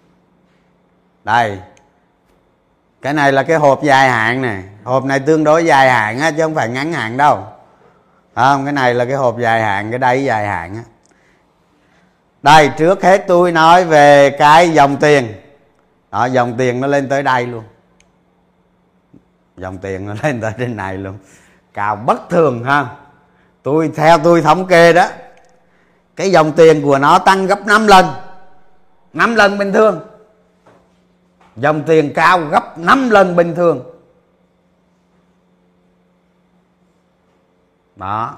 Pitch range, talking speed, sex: 120-170 Hz, 145 wpm, male